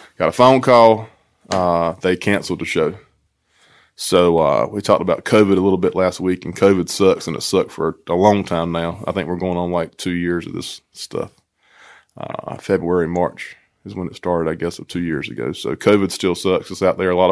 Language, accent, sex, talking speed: English, American, male, 220 wpm